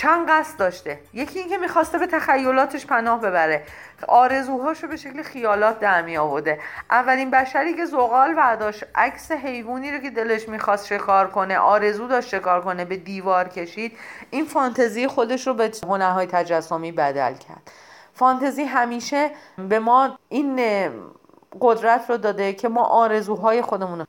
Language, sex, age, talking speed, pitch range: Persian, female, 40-59, 150 wpm, 185-250 Hz